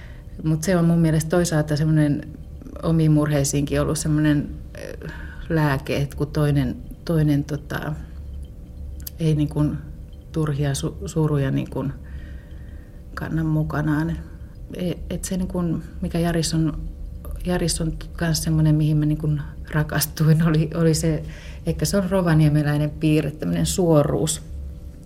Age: 30-49